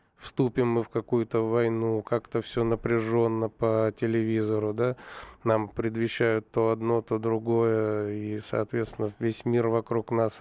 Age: 20-39